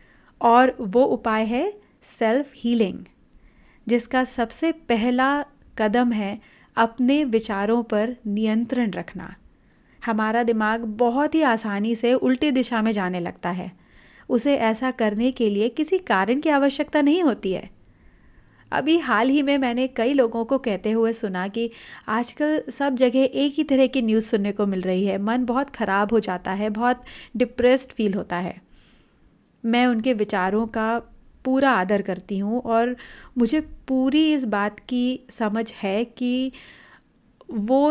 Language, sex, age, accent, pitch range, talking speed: Hindi, female, 30-49, native, 215-255 Hz, 150 wpm